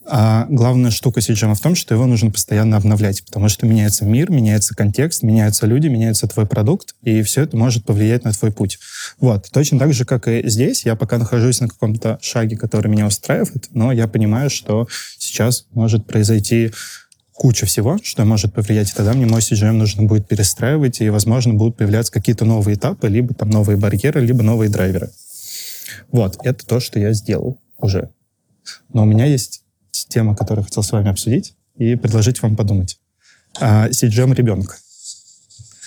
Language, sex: Russian, male